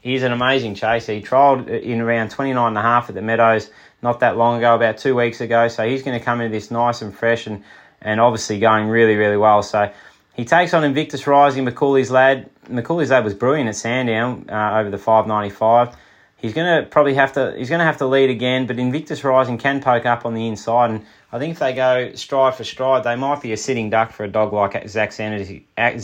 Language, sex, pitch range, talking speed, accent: English, male, 105-130 Hz, 235 wpm, Australian